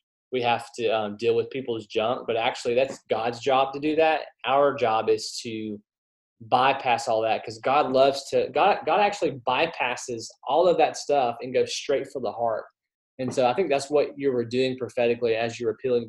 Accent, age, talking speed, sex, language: American, 20-39, 205 wpm, male, English